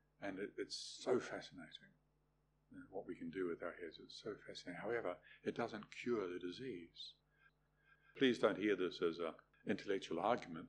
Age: 50-69